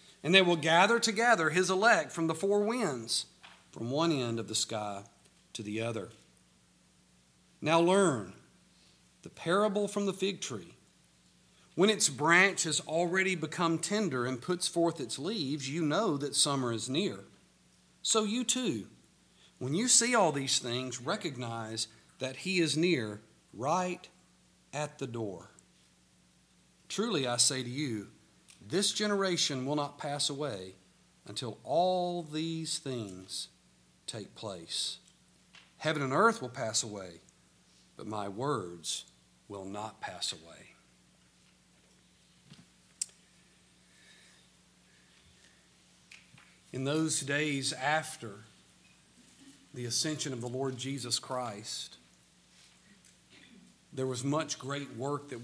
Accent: American